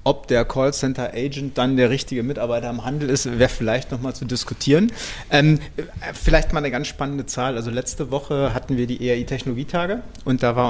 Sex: male